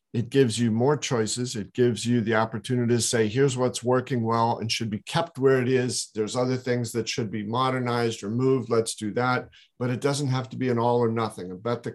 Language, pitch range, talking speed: English, 110-125 Hz, 235 wpm